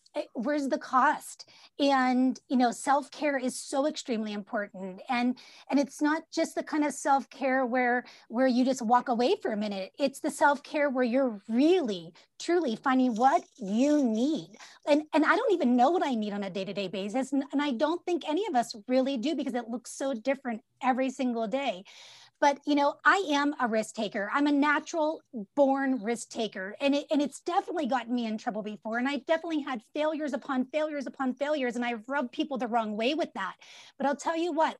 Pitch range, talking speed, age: 240-300 Hz, 205 wpm, 30-49